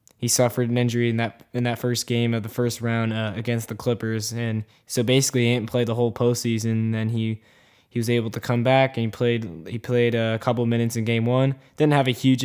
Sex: male